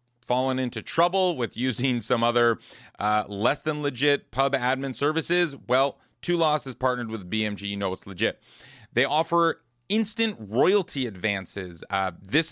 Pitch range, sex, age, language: 110-140 Hz, male, 30-49, English